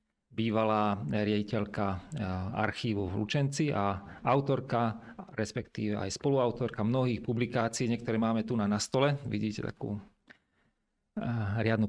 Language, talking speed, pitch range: Slovak, 100 wpm, 110-125 Hz